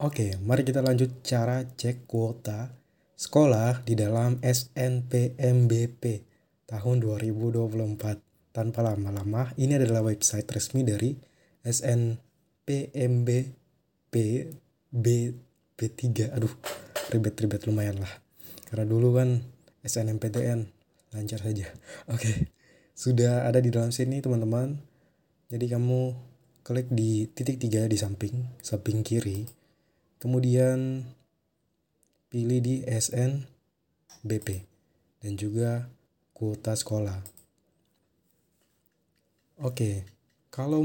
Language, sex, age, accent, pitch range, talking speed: Indonesian, male, 20-39, native, 110-125 Hz, 90 wpm